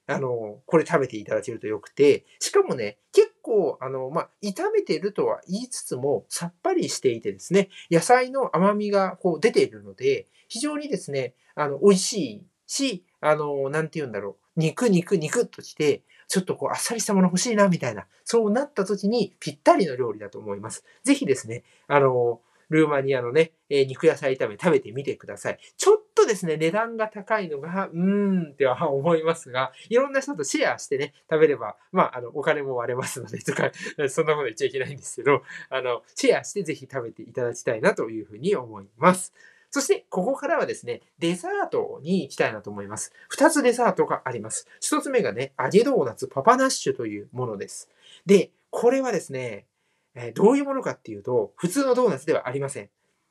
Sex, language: male, Japanese